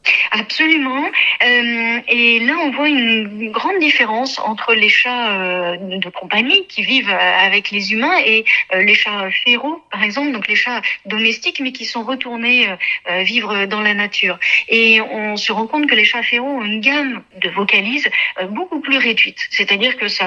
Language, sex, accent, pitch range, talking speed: French, female, French, 200-260 Hz, 165 wpm